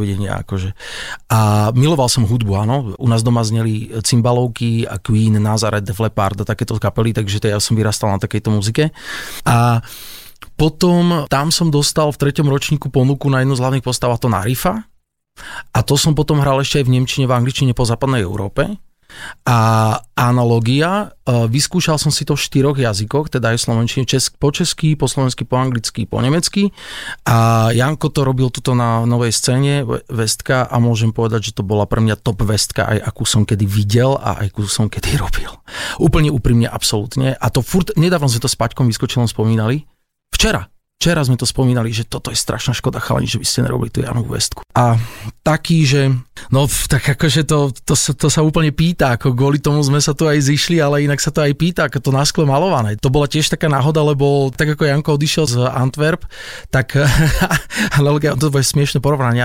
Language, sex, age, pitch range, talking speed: Slovak, male, 30-49, 115-145 Hz, 190 wpm